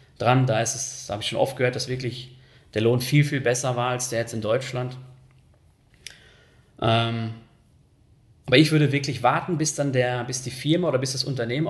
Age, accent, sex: 30-49, German, male